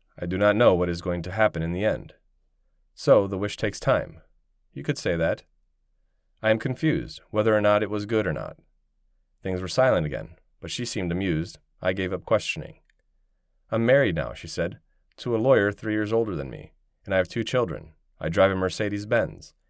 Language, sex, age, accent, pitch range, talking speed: English, male, 30-49, American, 80-110 Hz, 205 wpm